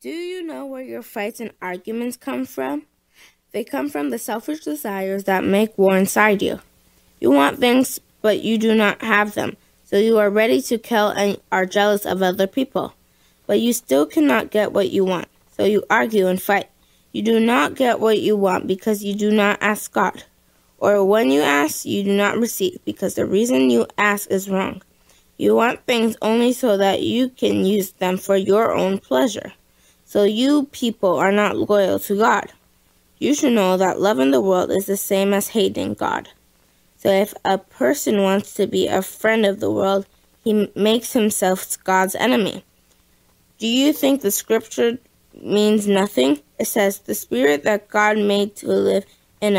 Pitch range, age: 190-225 Hz, 20-39